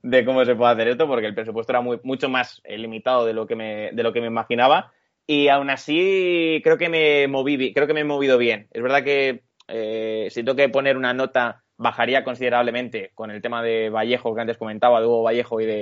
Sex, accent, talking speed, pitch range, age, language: male, Spanish, 225 wpm, 115-140 Hz, 20-39, Spanish